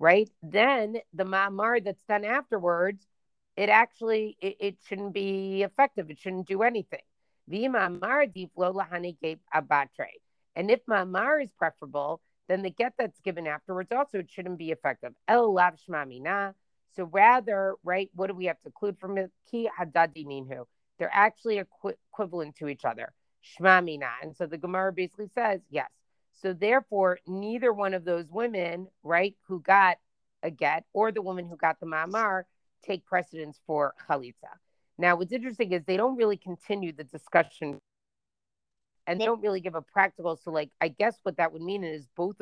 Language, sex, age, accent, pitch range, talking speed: English, female, 40-59, American, 160-205 Hz, 155 wpm